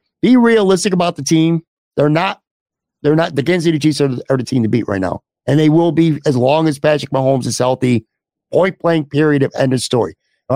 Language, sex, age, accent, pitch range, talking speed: English, male, 50-69, American, 135-175 Hz, 225 wpm